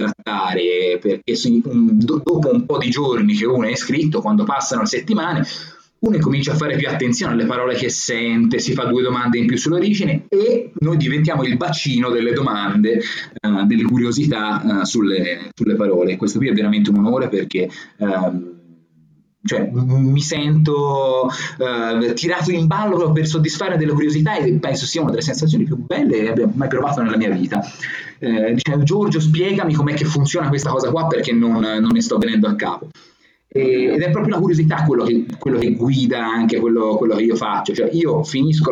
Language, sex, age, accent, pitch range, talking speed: Italian, male, 20-39, native, 115-165 Hz, 180 wpm